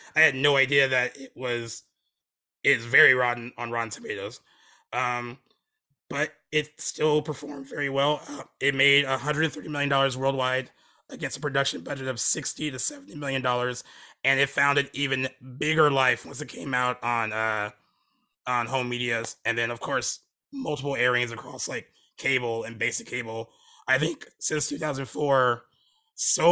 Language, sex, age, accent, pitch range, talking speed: English, male, 20-39, American, 120-150 Hz, 155 wpm